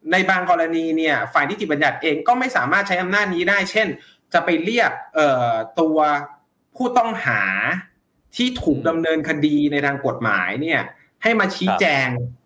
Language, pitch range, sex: Thai, 140-205 Hz, male